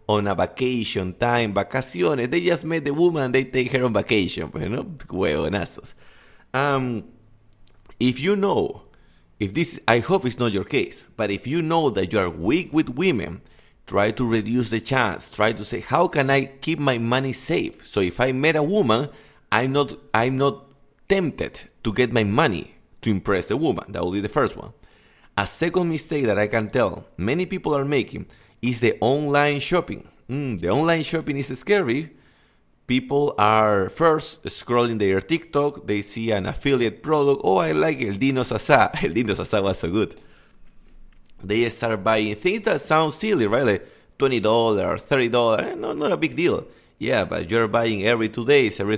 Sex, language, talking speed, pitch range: male, English, 185 wpm, 110-145 Hz